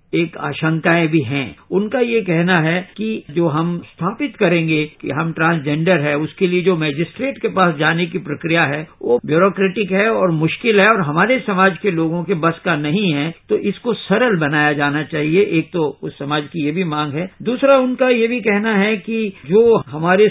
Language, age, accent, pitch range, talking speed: English, 50-69, Indian, 160-195 Hz, 200 wpm